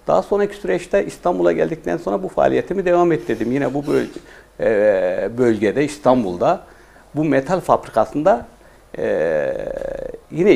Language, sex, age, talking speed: Turkish, male, 60-79, 125 wpm